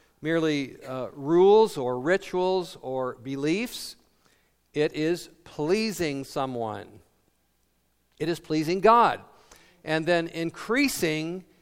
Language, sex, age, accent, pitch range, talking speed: English, male, 50-69, American, 135-180 Hz, 95 wpm